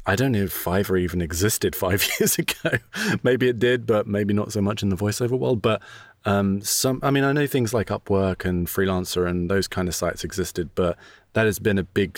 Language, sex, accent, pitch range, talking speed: English, male, British, 90-110 Hz, 225 wpm